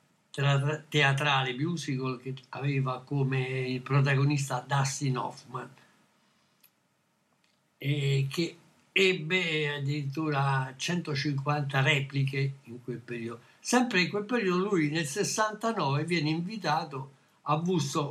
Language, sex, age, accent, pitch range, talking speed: Italian, male, 60-79, native, 135-170 Hz, 95 wpm